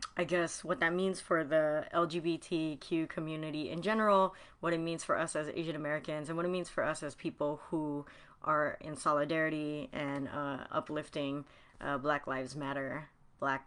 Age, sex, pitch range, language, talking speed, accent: 30-49, female, 145-175 Hz, English, 170 wpm, American